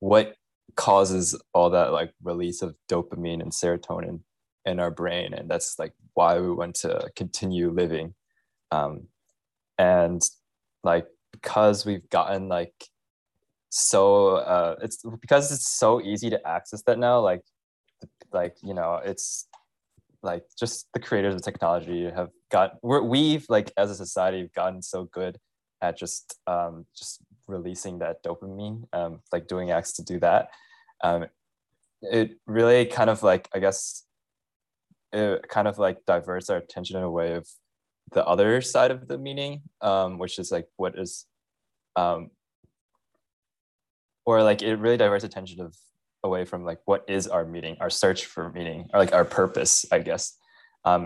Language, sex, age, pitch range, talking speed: English, male, 20-39, 85-110 Hz, 155 wpm